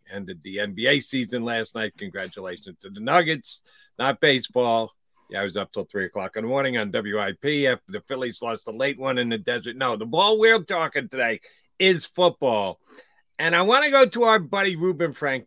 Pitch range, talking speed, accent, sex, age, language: 100-150 Hz, 200 wpm, American, male, 50-69, English